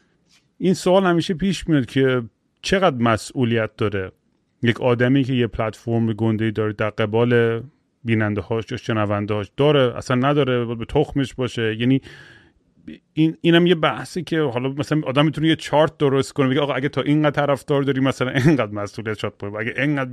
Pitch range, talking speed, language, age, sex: 115-145 Hz, 170 wpm, Persian, 30-49, male